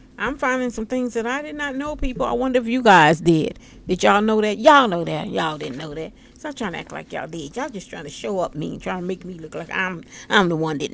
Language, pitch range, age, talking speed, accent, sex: English, 180-255 Hz, 50-69, 300 wpm, American, female